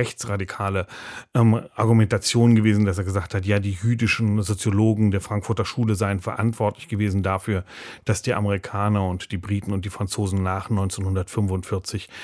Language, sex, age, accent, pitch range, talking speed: German, male, 30-49, German, 100-115 Hz, 145 wpm